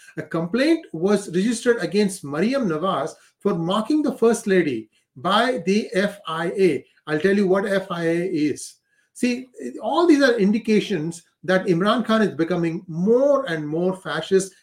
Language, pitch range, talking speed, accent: English, 165-220 Hz, 145 wpm, Indian